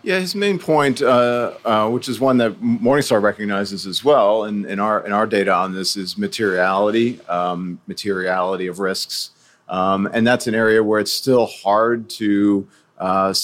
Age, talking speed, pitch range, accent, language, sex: 40-59, 175 wpm, 95-120 Hz, American, English, male